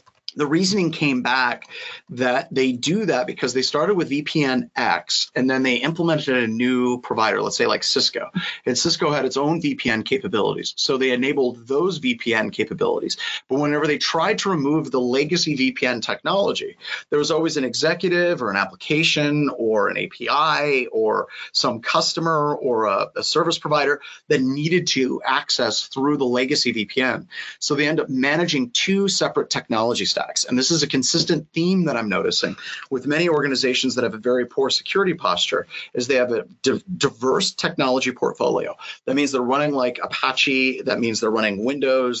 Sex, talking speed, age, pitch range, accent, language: male, 170 wpm, 30-49, 125-165 Hz, American, English